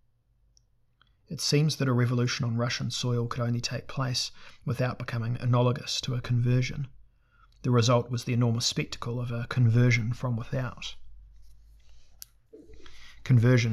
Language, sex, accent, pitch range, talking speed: English, male, Australian, 115-130 Hz, 130 wpm